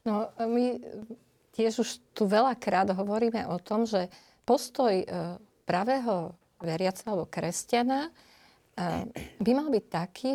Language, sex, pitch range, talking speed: Slovak, female, 190-245 Hz, 110 wpm